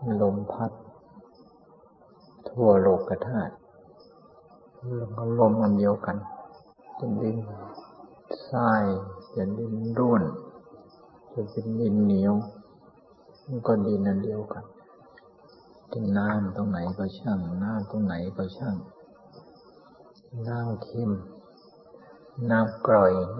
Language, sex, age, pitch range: Thai, male, 60-79, 100-115 Hz